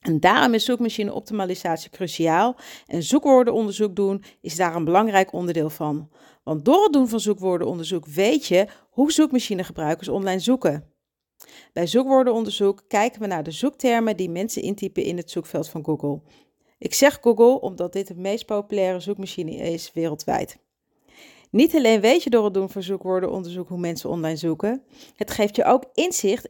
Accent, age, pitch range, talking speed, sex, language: Dutch, 40-59, 175-245 Hz, 160 wpm, female, Dutch